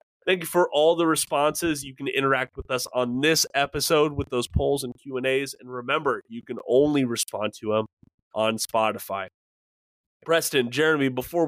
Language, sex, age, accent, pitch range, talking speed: English, male, 20-39, American, 110-145 Hz, 180 wpm